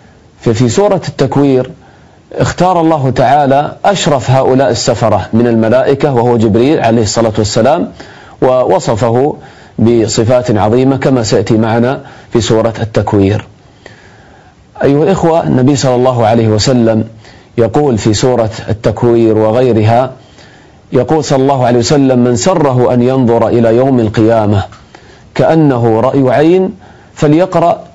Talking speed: 115 wpm